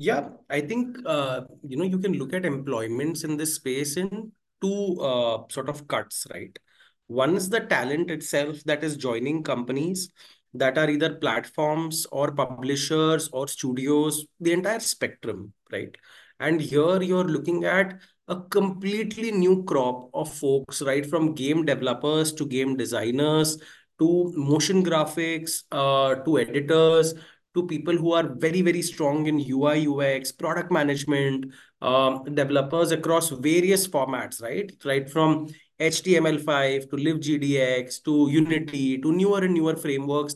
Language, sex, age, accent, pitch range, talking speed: English, male, 30-49, Indian, 145-185 Hz, 145 wpm